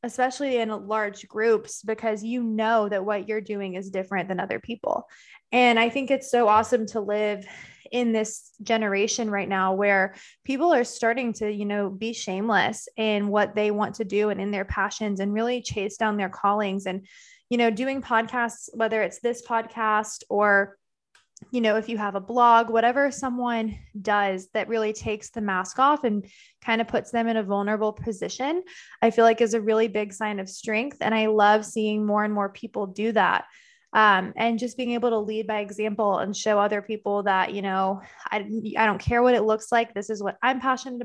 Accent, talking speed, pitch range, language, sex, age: American, 200 wpm, 205-235 Hz, English, female, 20-39